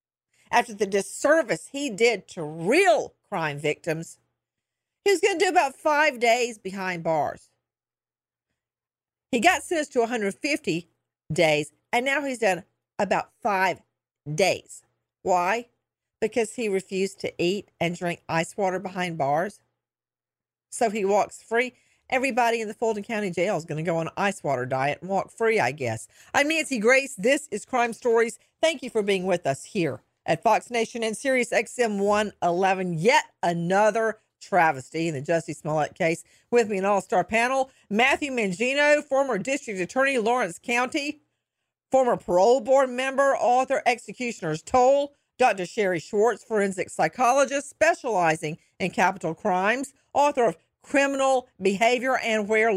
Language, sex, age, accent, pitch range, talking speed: English, female, 50-69, American, 175-255 Hz, 150 wpm